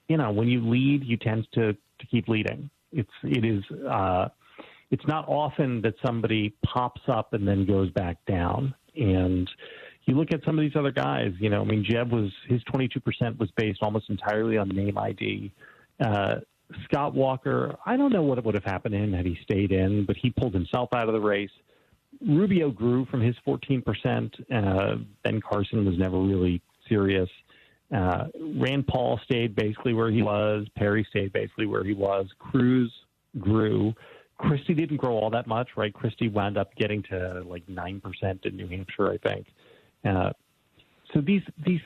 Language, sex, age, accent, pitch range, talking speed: English, male, 40-59, American, 100-130 Hz, 180 wpm